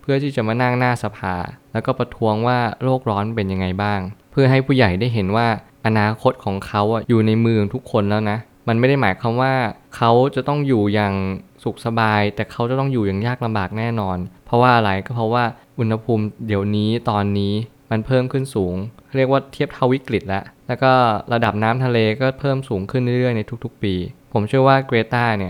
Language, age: Thai, 20-39